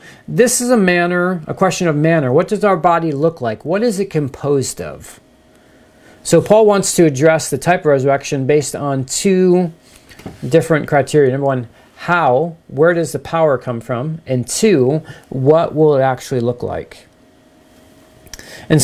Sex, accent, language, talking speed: male, American, English, 160 wpm